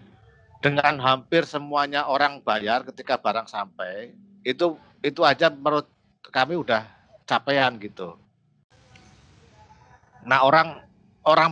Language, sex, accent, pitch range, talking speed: Indonesian, male, native, 110-135 Hz, 100 wpm